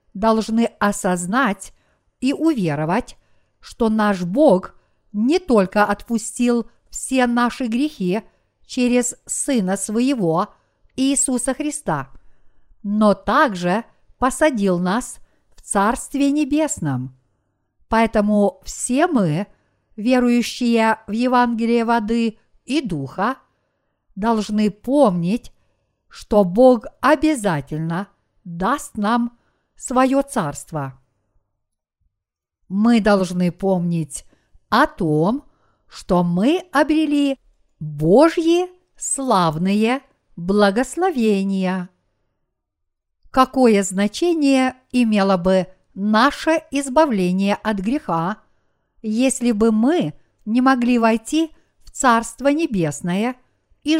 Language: Russian